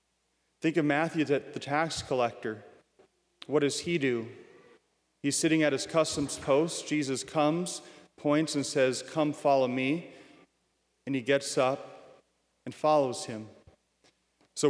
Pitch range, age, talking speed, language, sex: 135-165 Hz, 40-59, 130 wpm, English, male